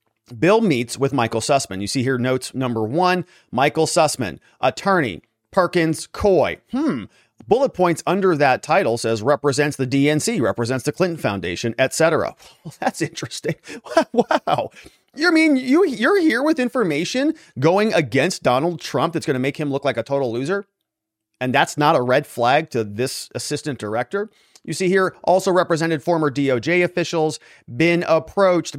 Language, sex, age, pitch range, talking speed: English, male, 30-49, 125-175 Hz, 160 wpm